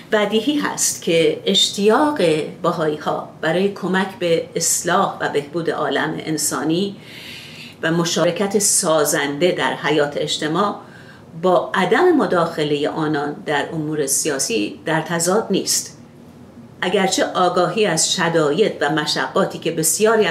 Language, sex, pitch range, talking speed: Persian, female, 160-215 Hz, 110 wpm